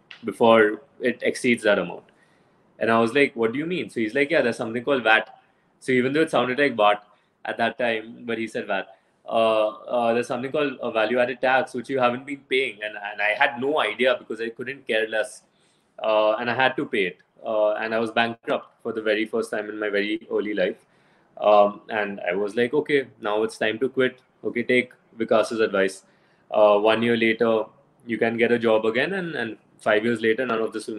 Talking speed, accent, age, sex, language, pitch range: 225 wpm, Indian, 20-39, male, English, 110-130 Hz